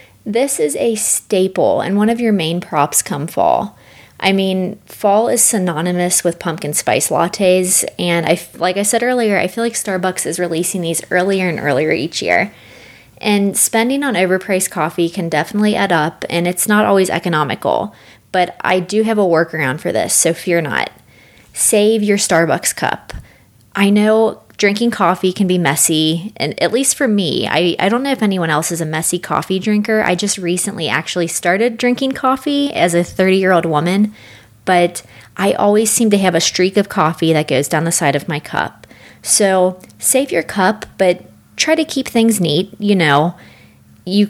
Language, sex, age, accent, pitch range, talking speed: English, female, 20-39, American, 170-215 Hz, 180 wpm